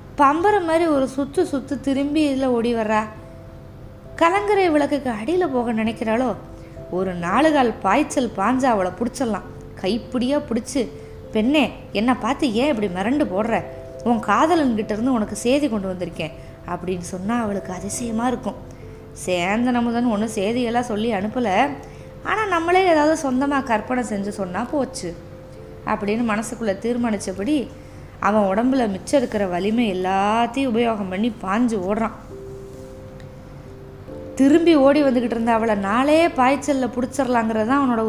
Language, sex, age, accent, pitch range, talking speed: Tamil, female, 20-39, native, 215-285 Hz, 125 wpm